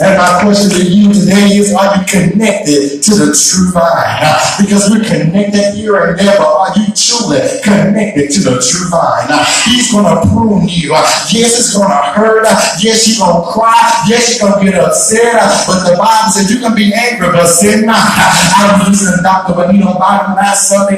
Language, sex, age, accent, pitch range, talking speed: English, male, 30-49, American, 175-220 Hz, 205 wpm